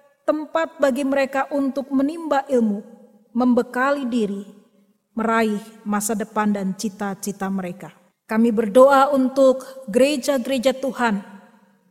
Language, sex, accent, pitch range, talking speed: Indonesian, female, native, 220-270 Hz, 95 wpm